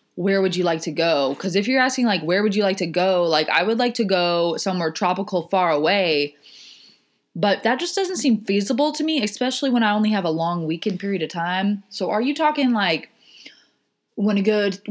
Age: 20-39